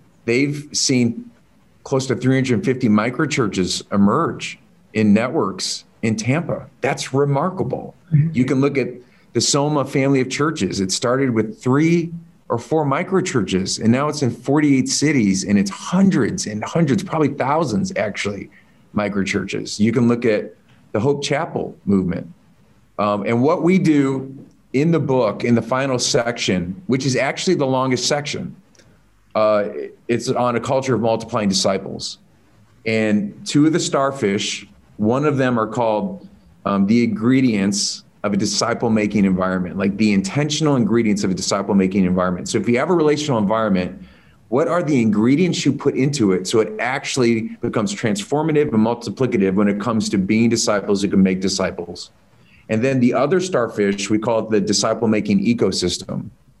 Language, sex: English, male